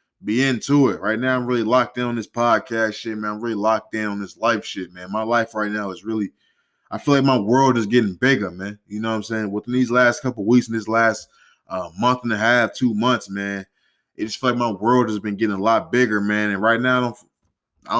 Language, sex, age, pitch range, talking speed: English, male, 20-39, 100-120 Hz, 250 wpm